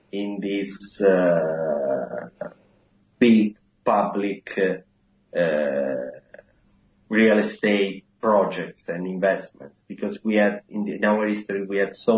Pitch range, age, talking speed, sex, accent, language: 95-105 Hz, 30-49, 115 wpm, male, Italian, English